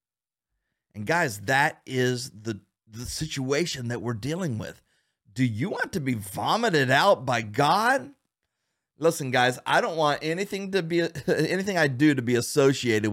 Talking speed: 155 wpm